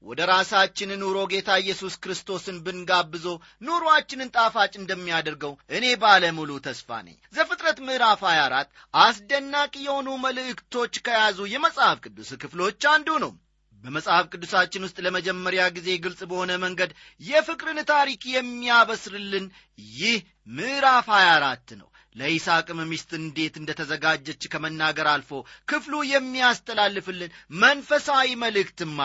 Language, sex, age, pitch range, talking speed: Amharic, male, 30-49, 160-250 Hz, 105 wpm